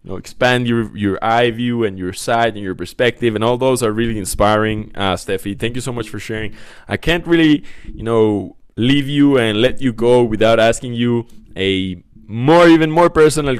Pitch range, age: 105-120 Hz, 20-39